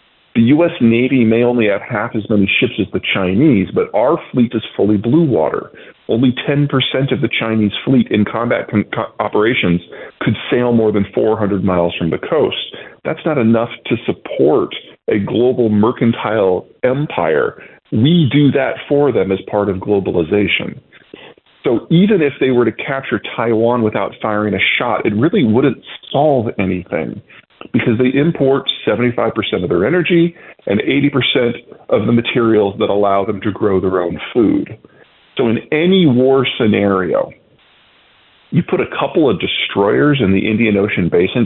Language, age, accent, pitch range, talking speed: English, 40-59, American, 100-130 Hz, 160 wpm